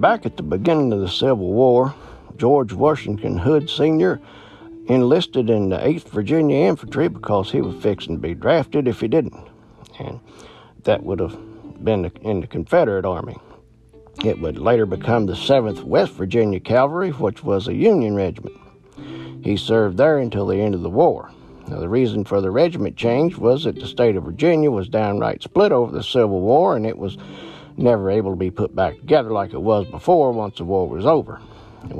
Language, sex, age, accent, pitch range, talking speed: English, male, 60-79, American, 100-130 Hz, 190 wpm